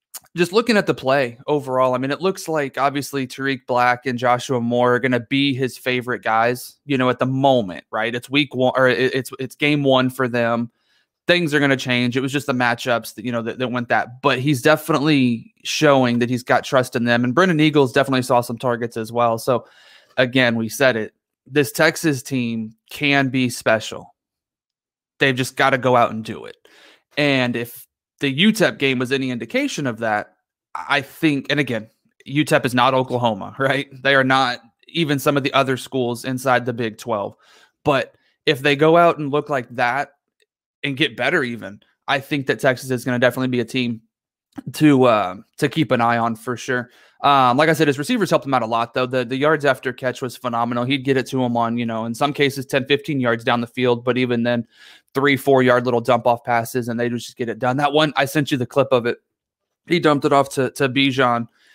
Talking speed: 220 wpm